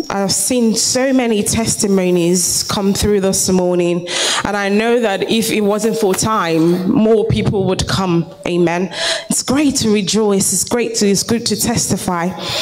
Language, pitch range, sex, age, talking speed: English, 195-250 Hz, female, 20-39, 165 wpm